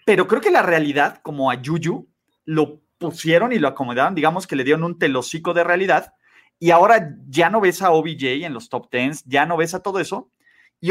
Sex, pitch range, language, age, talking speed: male, 160-205 Hz, Spanish, 30-49, 215 wpm